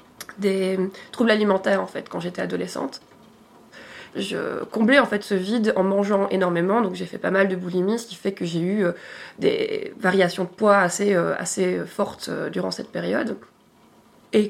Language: French